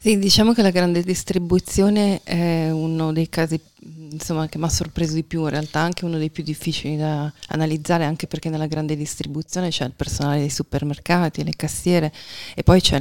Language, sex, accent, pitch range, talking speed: Italian, female, native, 155-185 Hz, 185 wpm